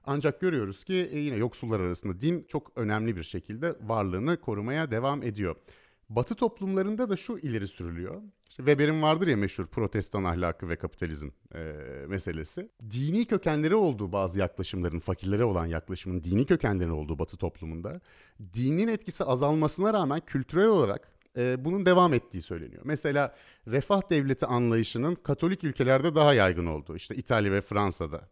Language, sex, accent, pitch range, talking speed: Turkish, male, native, 95-150 Hz, 145 wpm